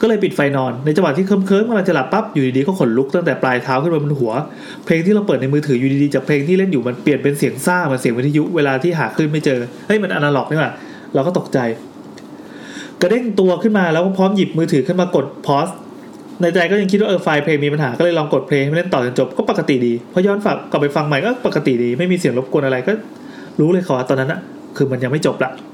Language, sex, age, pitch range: English, male, 30-49, 140-195 Hz